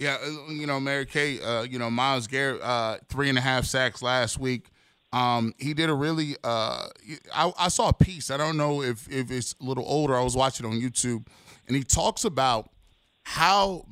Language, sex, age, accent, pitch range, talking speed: English, male, 20-39, American, 125-150 Hz, 210 wpm